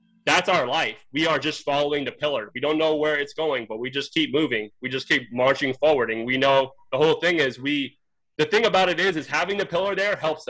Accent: American